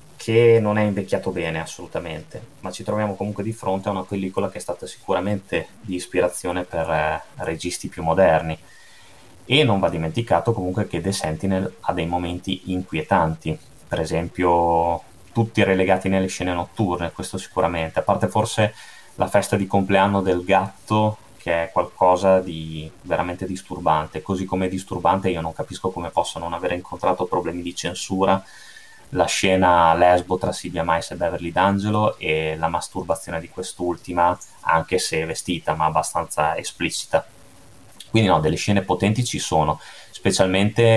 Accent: native